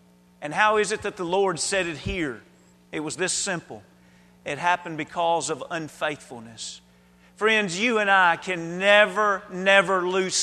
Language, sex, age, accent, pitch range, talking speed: English, male, 40-59, American, 160-215 Hz, 155 wpm